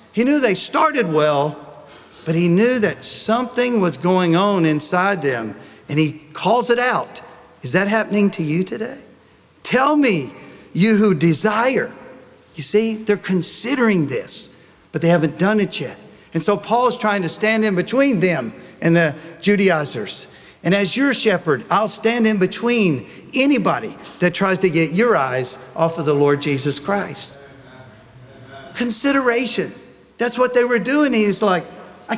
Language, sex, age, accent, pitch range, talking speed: English, male, 50-69, American, 180-245 Hz, 155 wpm